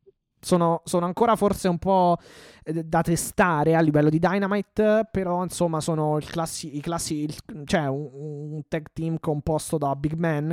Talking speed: 155 wpm